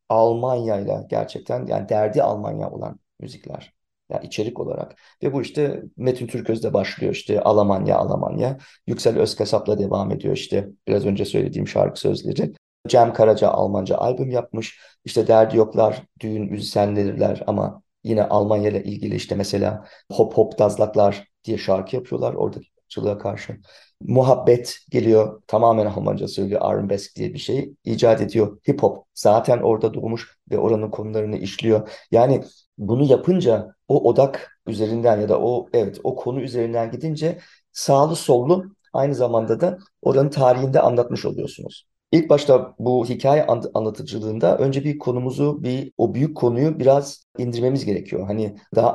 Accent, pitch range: native, 110-135 Hz